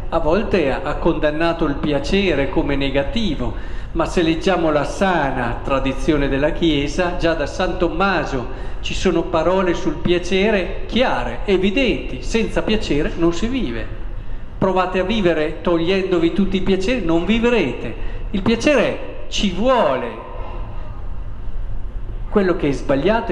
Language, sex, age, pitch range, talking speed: Italian, male, 50-69, 130-195 Hz, 125 wpm